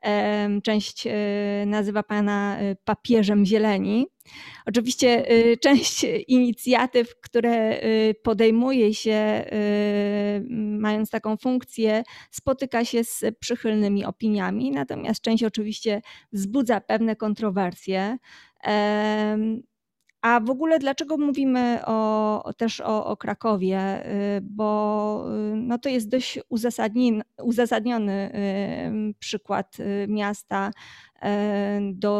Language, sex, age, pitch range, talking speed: Polish, female, 20-39, 200-230 Hz, 85 wpm